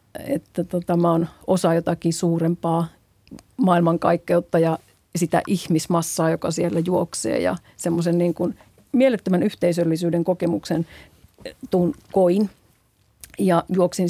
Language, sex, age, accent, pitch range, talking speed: Finnish, female, 40-59, native, 170-195 Hz, 100 wpm